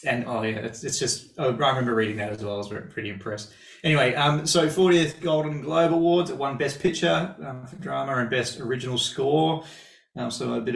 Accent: Australian